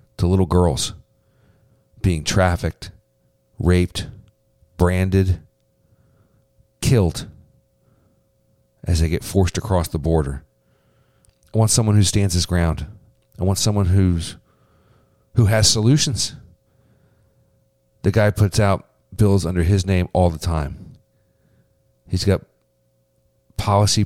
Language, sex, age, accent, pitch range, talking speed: English, male, 40-59, American, 85-110 Hz, 105 wpm